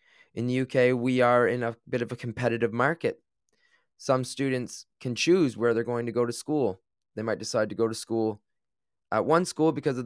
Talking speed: 210 wpm